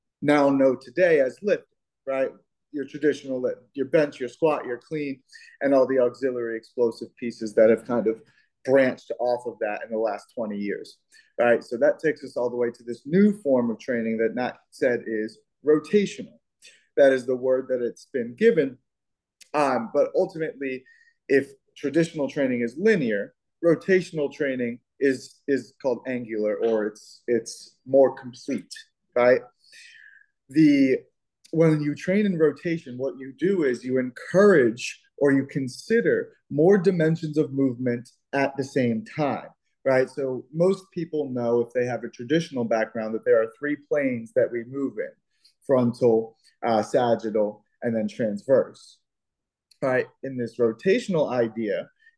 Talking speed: 155 wpm